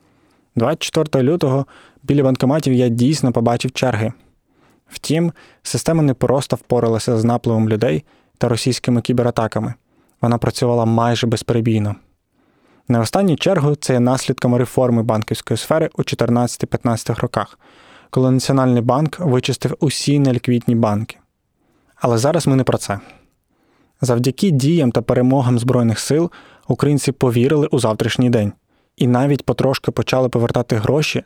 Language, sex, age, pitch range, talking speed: Ukrainian, male, 20-39, 120-140 Hz, 125 wpm